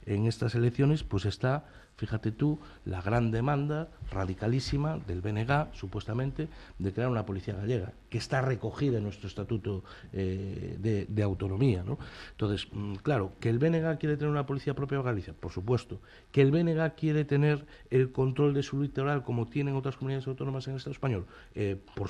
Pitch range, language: 105-140 Hz, Spanish